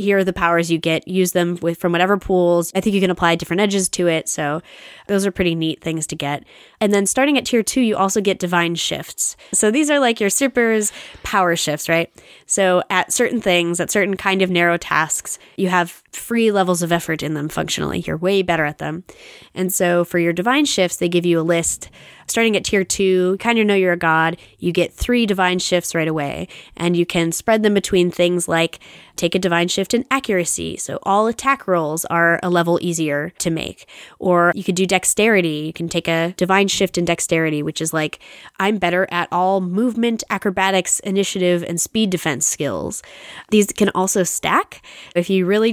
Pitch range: 170-200 Hz